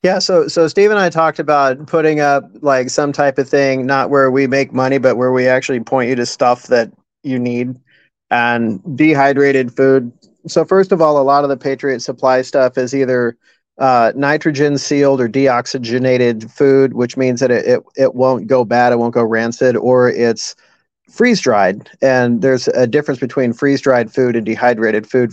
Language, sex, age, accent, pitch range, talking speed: English, male, 40-59, American, 120-140 Hz, 190 wpm